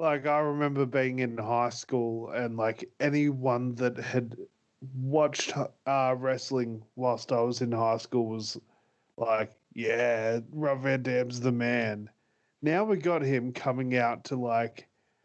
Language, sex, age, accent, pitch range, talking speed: English, male, 30-49, Australian, 120-145 Hz, 145 wpm